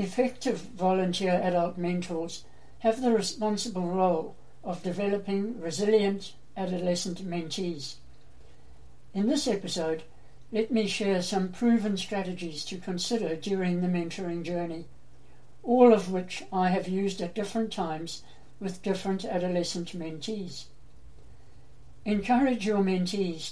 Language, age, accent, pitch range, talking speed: English, 60-79, British, 175-215 Hz, 110 wpm